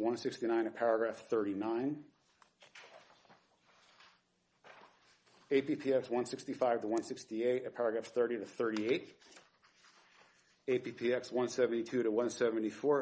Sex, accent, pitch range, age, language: male, American, 115-135 Hz, 40-59, English